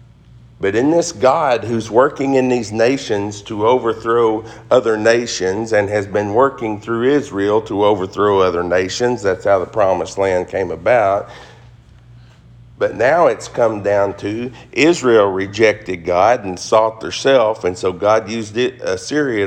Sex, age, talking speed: male, 40-59, 150 wpm